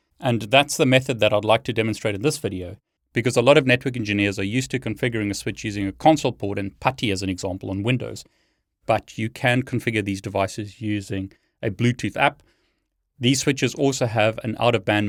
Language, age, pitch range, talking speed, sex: English, 30-49, 105-125 Hz, 205 wpm, male